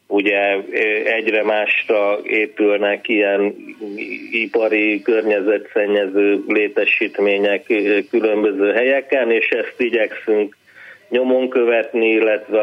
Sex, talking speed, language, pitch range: male, 75 wpm, Hungarian, 105-130 Hz